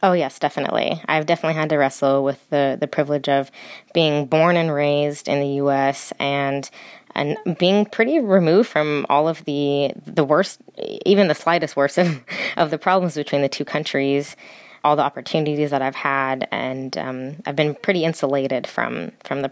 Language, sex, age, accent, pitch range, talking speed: English, female, 20-39, American, 140-160 Hz, 185 wpm